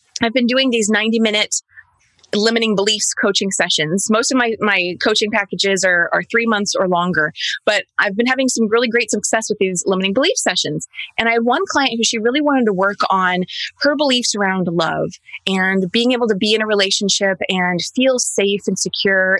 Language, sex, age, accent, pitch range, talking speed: English, female, 20-39, American, 195-240 Hz, 195 wpm